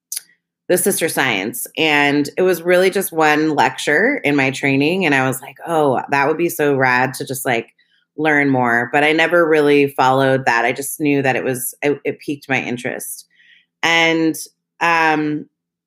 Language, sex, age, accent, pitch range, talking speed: English, female, 20-39, American, 135-160 Hz, 180 wpm